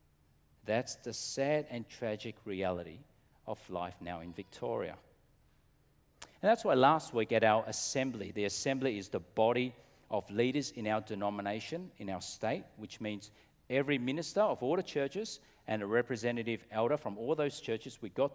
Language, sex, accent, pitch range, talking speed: English, male, Australian, 105-150 Hz, 165 wpm